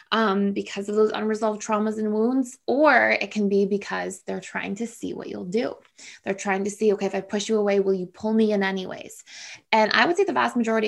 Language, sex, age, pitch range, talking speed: English, female, 20-39, 195-225 Hz, 235 wpm